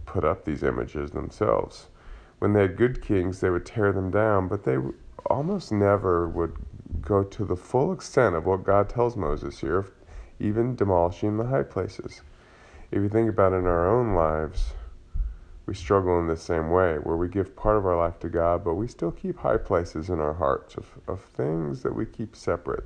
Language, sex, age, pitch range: English, male, 30-49, 85-105 Hz